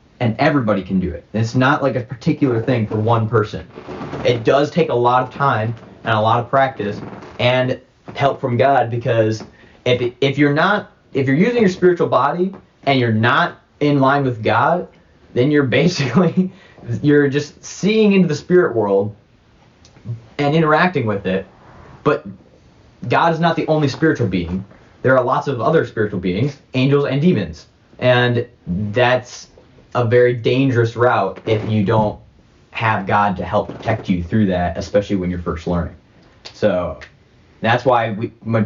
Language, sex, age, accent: English, male, 30-49, American